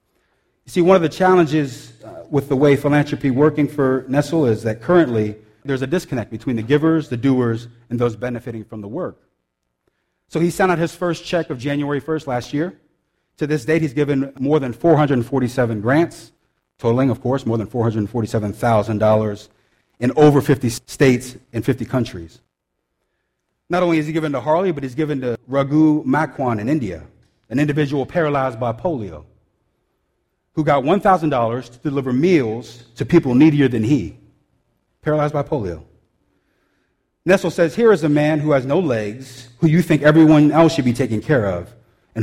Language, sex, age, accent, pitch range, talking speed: English, male, 40-59, American, 115-150 Hz, 170 wpm